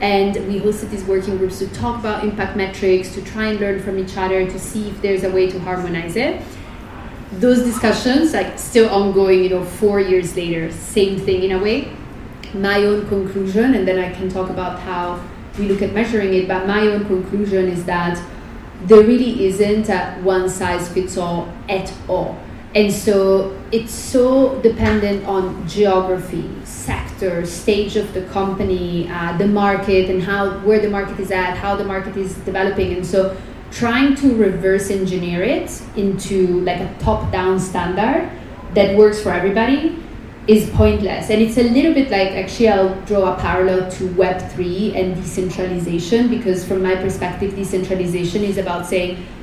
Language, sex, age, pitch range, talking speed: English, female, 30-49, 185-210 Hz, 175 wpm